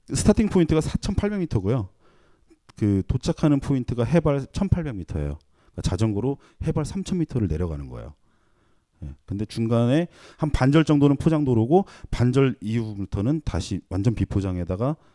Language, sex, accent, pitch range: Korean, male, native, 95-145 Hz